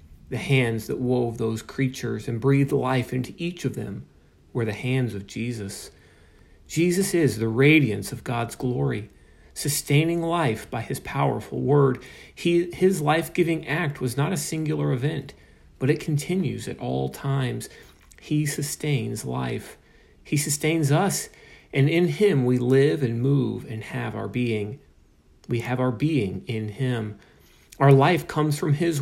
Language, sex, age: English, male, 40-59